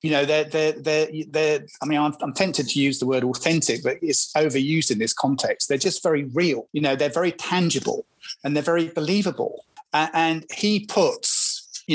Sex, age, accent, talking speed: male, 30-49, British, 200 wpm